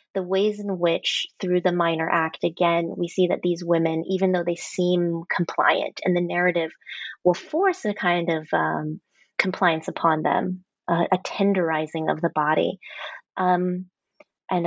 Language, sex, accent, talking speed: English, female, American, 160 wpm